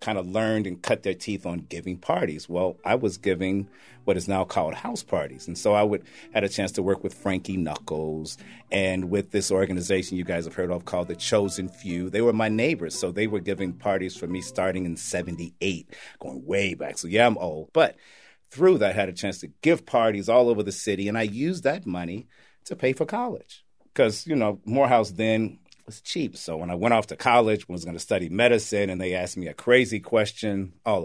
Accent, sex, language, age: American, male, English, 40-59